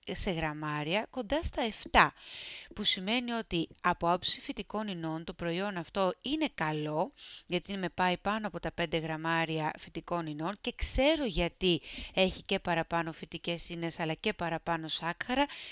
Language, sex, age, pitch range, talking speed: Greek, female, 30-49, 165-220 Hz, 150 wpm